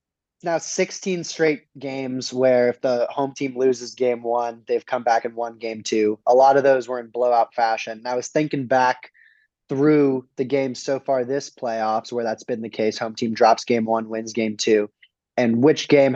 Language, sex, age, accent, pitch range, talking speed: English, male, 20-39, American, 110-135 Hz, 205 wpm